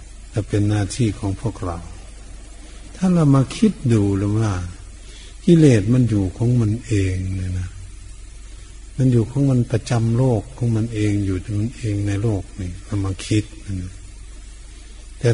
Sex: male